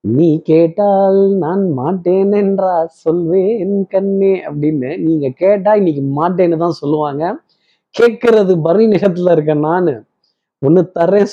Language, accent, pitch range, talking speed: Tamil, native, 140-190 Hz, 115 wpm